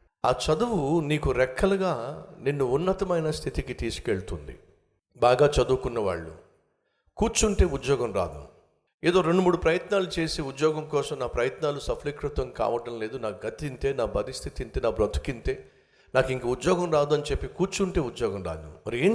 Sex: male